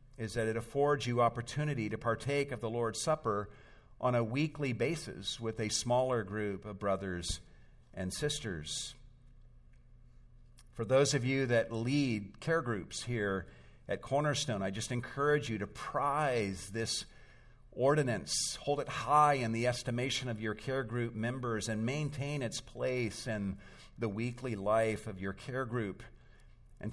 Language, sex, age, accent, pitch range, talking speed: English, male, 50-69, American, 100-130 Hz, 150 wpm